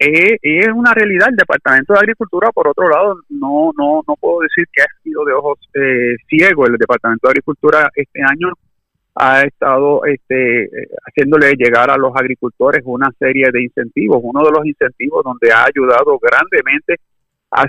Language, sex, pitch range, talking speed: Spanish, male, 125-175 Hz, 170 wpm